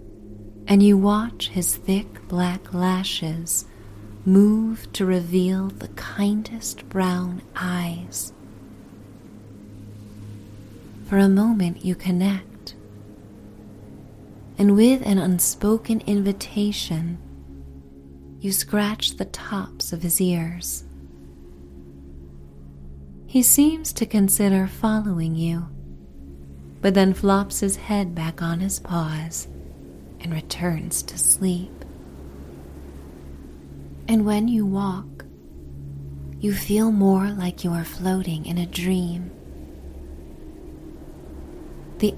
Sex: female